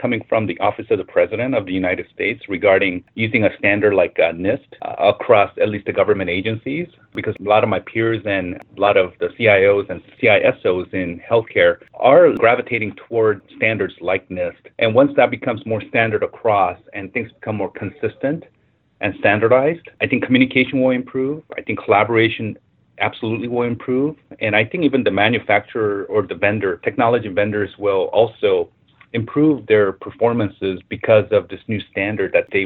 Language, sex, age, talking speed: English, male, 30-49, 175 wpm